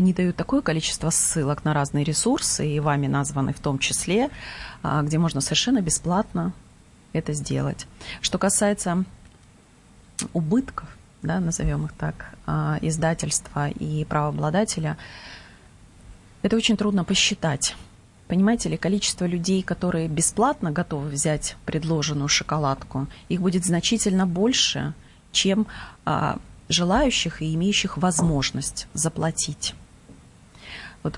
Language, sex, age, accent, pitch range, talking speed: Russian, female, 30-49, native, 150-185 Hz, 105 wpm